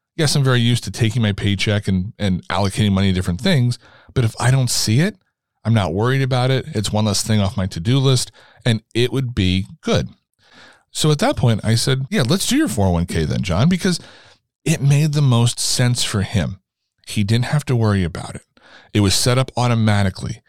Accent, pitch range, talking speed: American, 105-135 Hz, 210 wpm